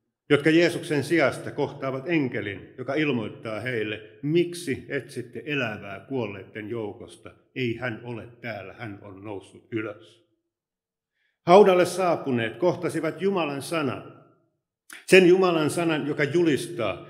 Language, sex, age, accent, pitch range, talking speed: Finnish, male, 50-69, native, 115-165 Hz, 110 wpm